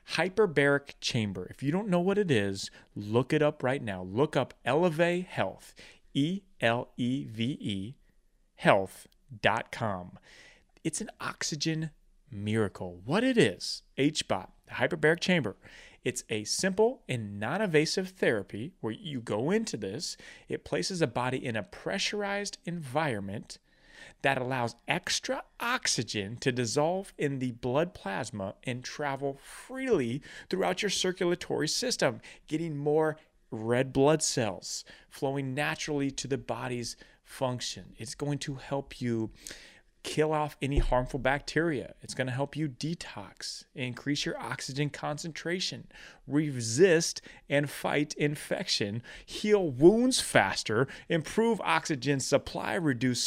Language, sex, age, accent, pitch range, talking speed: English, male, 30-49, American, 115-160 Hz, 125 wpm